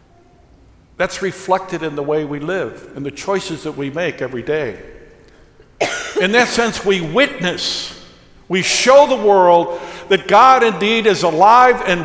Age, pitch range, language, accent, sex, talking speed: 60-79, 175-230 Hz, English, American, male, 150 wpm